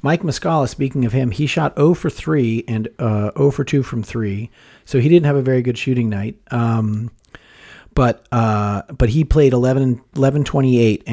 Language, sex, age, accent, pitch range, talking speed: English, male, 40-59, American, 110-130 Hz, 180 wpm